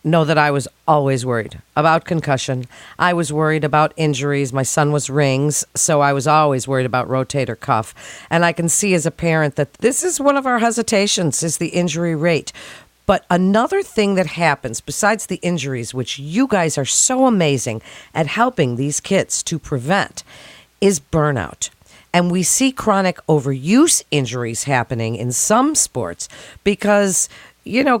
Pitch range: 145-195 Hz